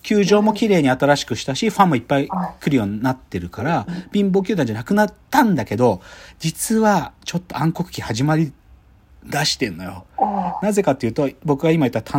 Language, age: Japanese, 40-59